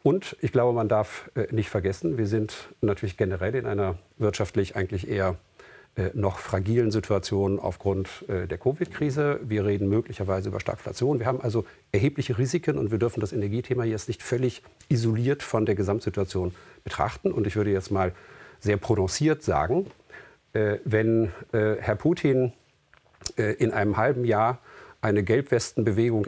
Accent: German